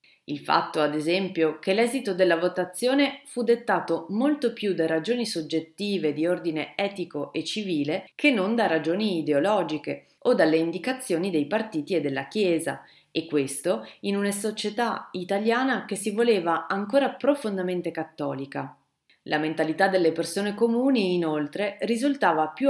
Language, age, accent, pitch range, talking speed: Italian, 30-49, native, 160-230 Hz, 140 wpm